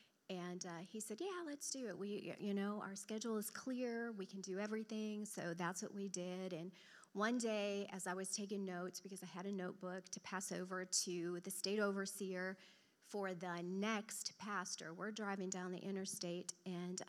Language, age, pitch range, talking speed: English, 40-59, 185-220 Hz, 190 wpm